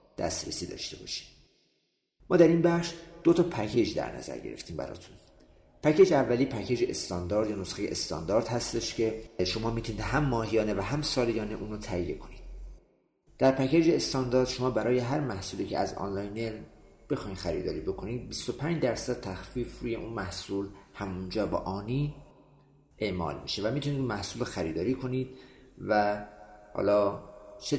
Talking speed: 145 wpm